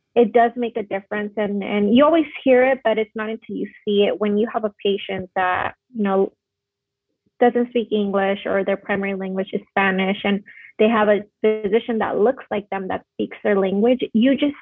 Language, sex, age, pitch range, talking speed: English, female, 30-49, 195-225 Hz, 205 wpm